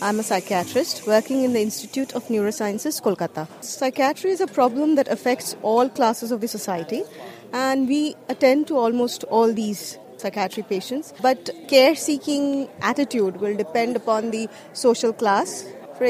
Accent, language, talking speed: Indian, English, 150 wpm